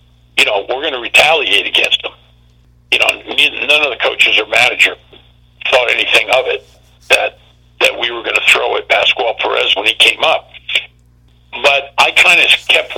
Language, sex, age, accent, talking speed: English, male, 60-79, American, 180 wpm